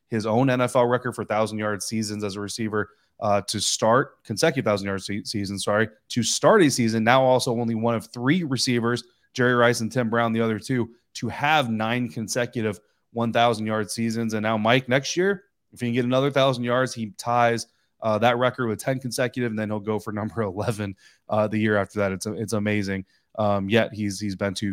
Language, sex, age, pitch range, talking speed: English, male, 20-39, 105-130 Hz, 205 wpm